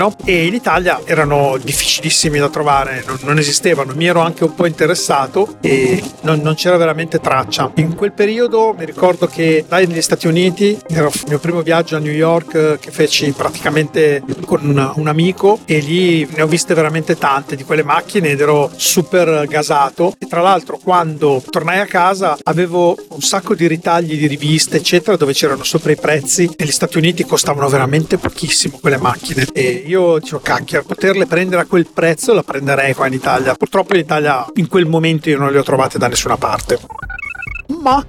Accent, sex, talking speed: native, male, 190 wpm